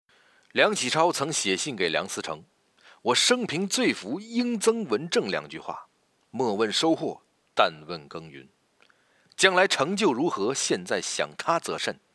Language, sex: Chinese, male